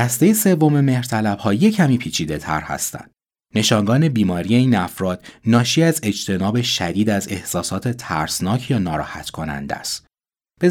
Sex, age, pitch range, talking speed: male, 30-49, 95-135 Hz, 125 wpm